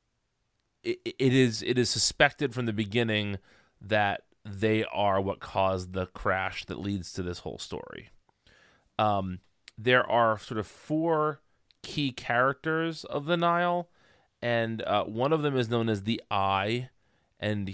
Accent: American